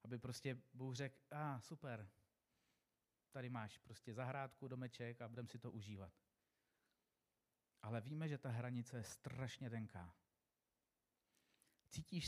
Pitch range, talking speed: 120-150 Hz, 125 wpm